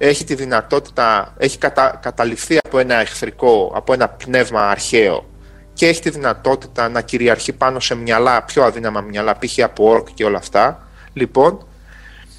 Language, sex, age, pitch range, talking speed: Greek, male, 30-49, 115-160 Hz, 155 wpm